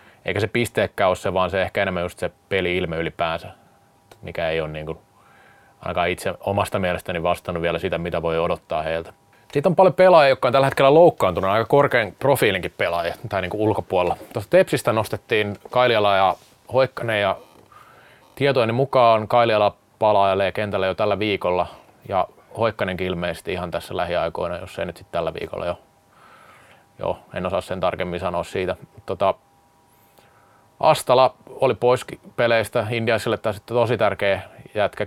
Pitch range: 90-115 Hz